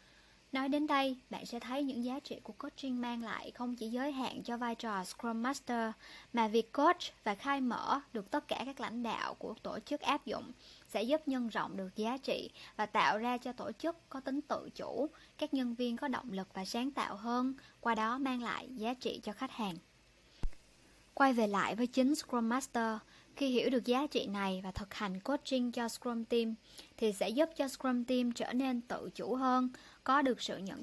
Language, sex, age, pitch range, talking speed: Vietnamese, male, 20-39, 220-265 Hz, 215 wpm